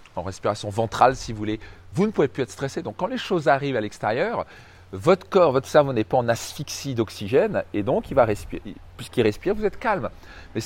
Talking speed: 220 wpm